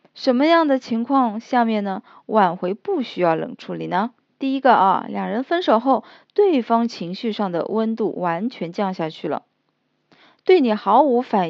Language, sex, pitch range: Chinese, female, 195-315 Hz